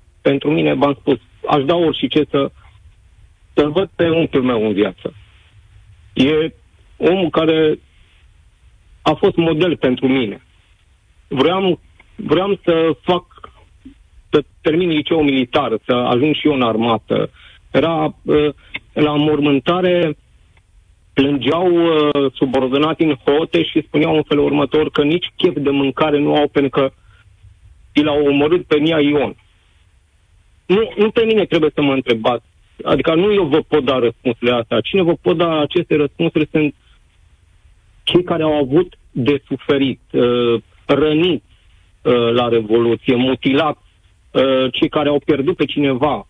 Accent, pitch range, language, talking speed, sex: native, 105-155 Hz, Romanian, 135 wpm, male